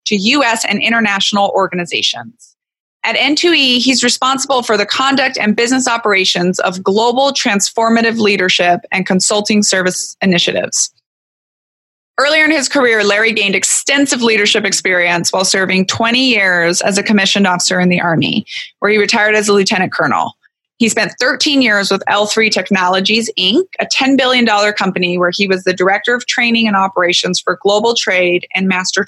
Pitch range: 200-245 Hz